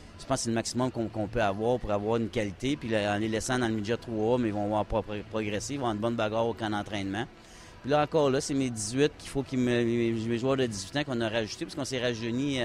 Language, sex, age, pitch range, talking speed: French, male, 30-49, 100-120 Hz, 280 wpm